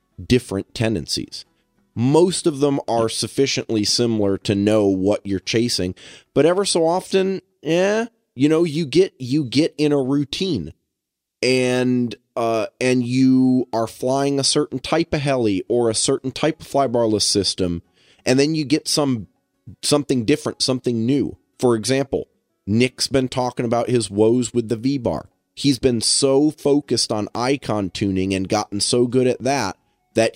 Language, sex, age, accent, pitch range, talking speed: English, male, 30-49, American, 110-140 Hz, 160 wpm